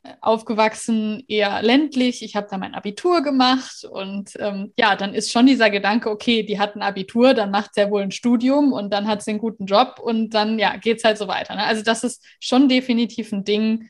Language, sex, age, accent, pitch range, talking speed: German, female, 20-39, German, 200-230 Hz, 225 wpm